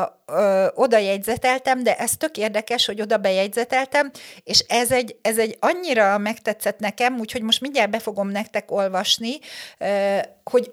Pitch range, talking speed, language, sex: 195-255 Hz, 135 wpm, Hungarian, female